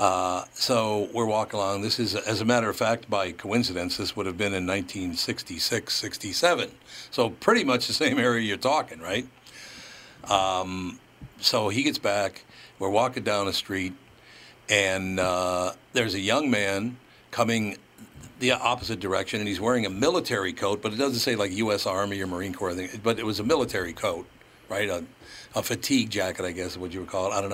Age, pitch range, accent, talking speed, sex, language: 60-79, 95-115 Hz, American, 190 wpm, male, English